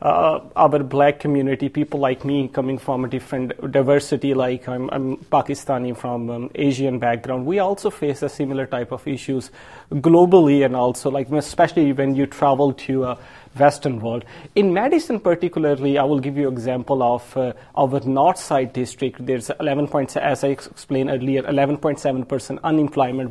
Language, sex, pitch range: English, male, 135-170 Hz